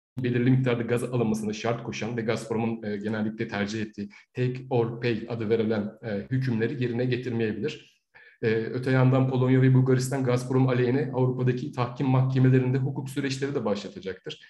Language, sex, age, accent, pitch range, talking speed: Turkish, male, 40-59, native, 105-125 Hz, 135 wpm